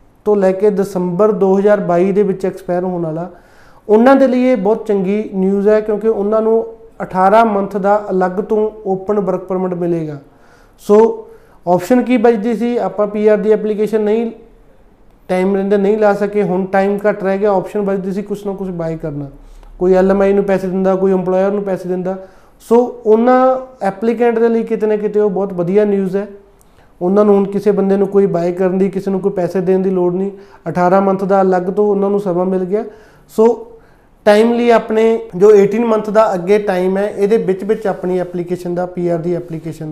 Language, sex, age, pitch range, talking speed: Punjabi, male, 30-49, 180-210 Hz, 180 wpm